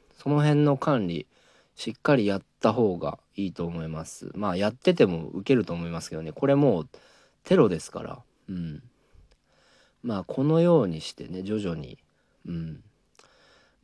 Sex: male